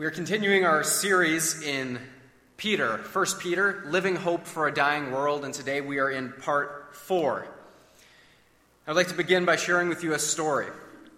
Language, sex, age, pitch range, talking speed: English, male, 30-49, 140-190 Hz, 170 wpm